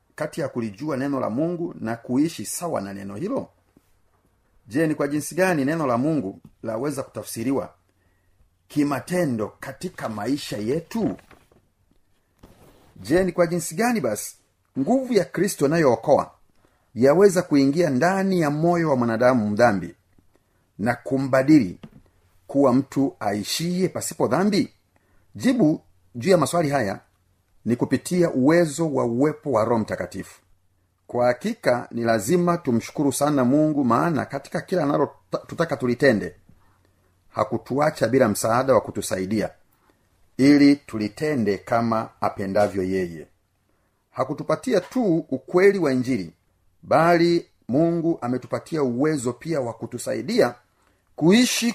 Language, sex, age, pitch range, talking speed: Swahili, male, 40-59, 100-160 Hz, 115 wpm